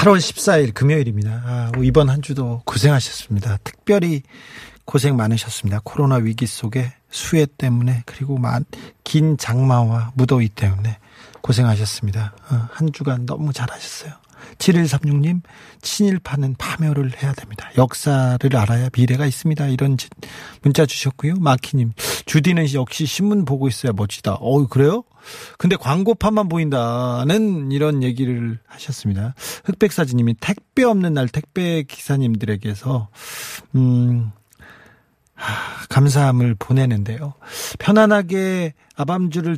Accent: native